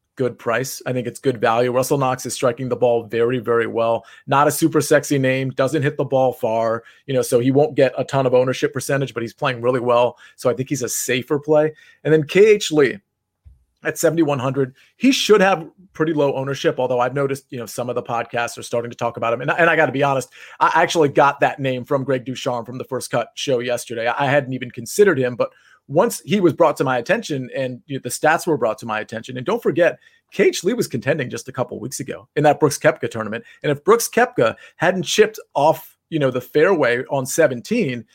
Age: 30-49